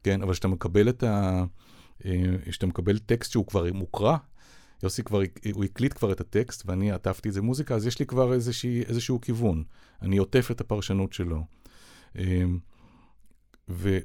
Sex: male